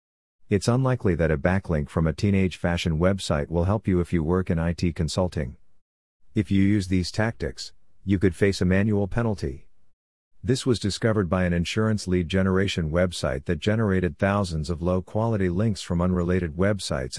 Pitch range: 85-100 Hz